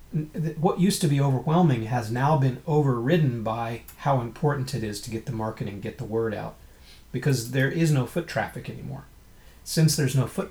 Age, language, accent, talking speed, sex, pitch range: 30-49, English, American, 190 wpm, male, 110-135 Hz